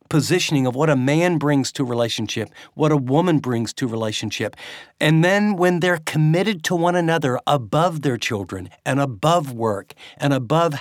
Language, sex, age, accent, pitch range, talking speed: English, male, 50-69, American, 120-160 Hz, 180 wpm